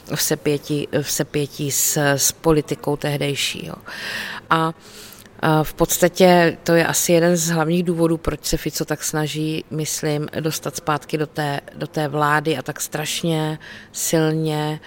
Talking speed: 140 wpm